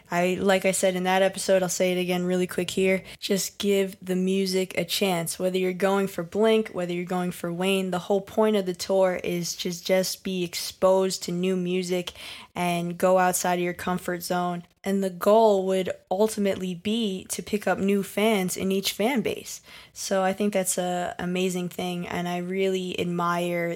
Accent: American